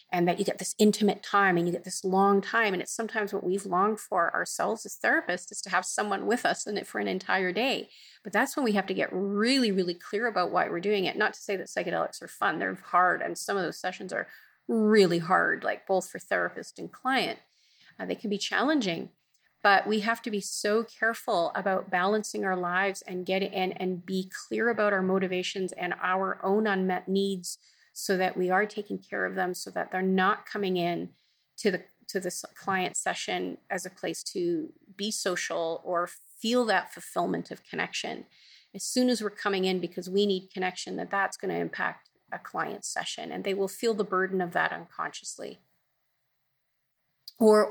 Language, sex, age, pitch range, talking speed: English, female, 30-49, 180-210 Hz, 205 wpm